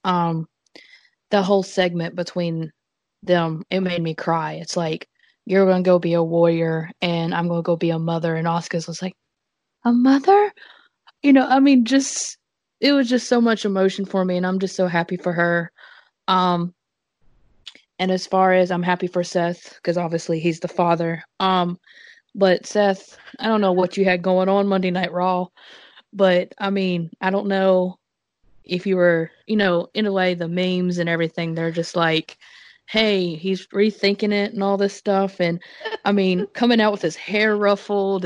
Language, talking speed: English, 185 wpm